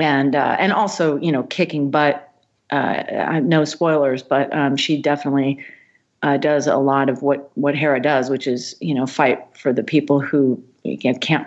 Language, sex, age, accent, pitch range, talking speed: English, female, 40-59, American, 135-155 Hz, 180 wpm